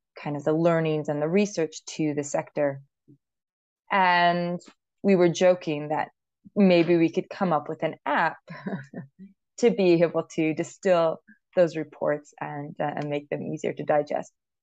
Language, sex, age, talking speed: English, female, 20-39, 155 wpm